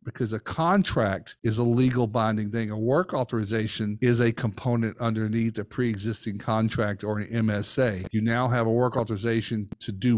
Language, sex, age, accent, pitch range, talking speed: English, male, 50-69, American, 110-130 Hz, 175 wpm